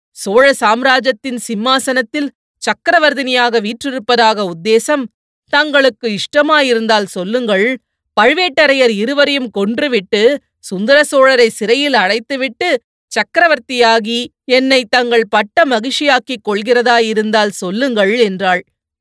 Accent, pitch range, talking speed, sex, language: native, 200-255 Hz, 75 wpm, female, Tamil